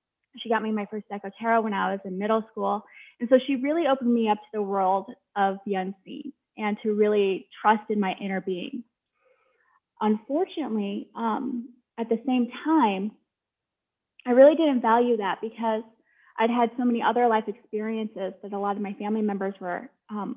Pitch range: 210-250 Hz